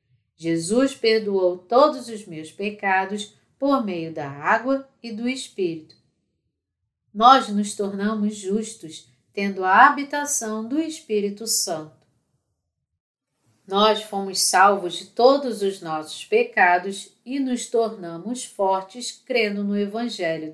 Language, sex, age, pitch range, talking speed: Portuguese, female, 40-59, 180-245 Hz, 110 wpm